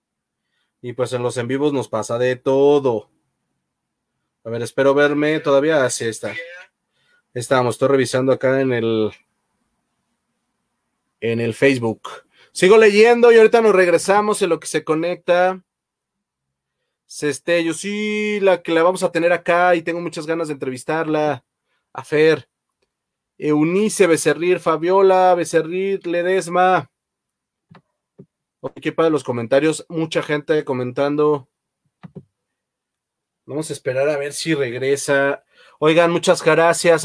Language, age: Spanish, 30-49